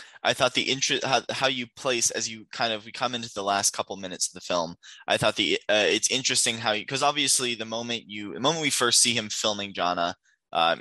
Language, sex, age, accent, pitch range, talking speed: English, male, 10-29, American, 100-120 Hz, 240 wpm